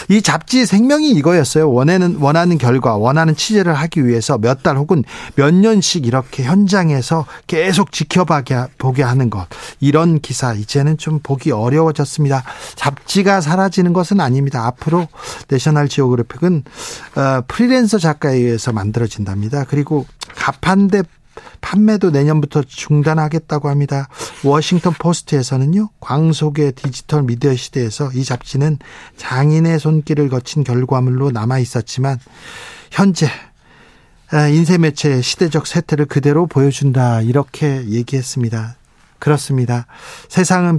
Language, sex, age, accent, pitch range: Korean, male, 40-59, native, 130-175 Hz